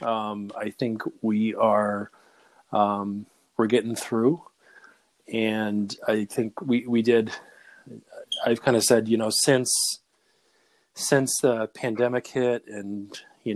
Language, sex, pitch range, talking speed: English, male, 105-120 Hz, 125 wpm